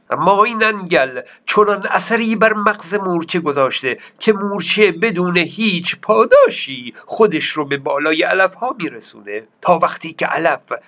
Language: Persian